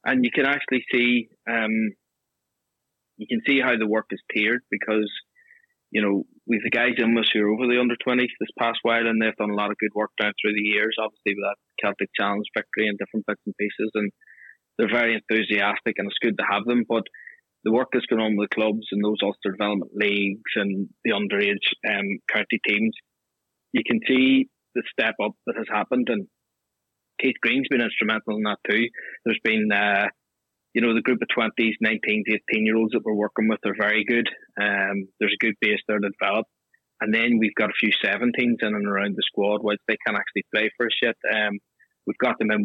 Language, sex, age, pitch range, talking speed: English, male, 20-39, 105-115 Hz, 215 wpm